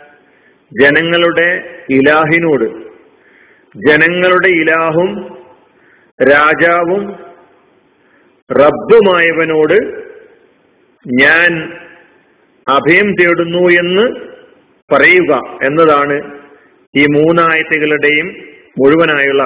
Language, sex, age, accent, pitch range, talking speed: Malayalam, male, 50-69, native, 155-215 Hz, 45 wpm